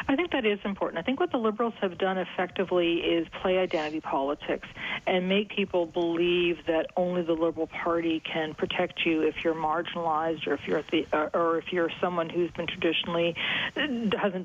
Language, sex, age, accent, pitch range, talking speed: English, female, 40-59, American, 165-200 Hz, 185 wpm